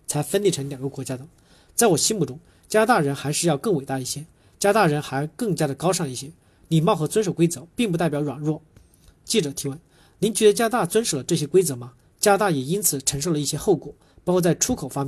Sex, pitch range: male, 140-185 Hz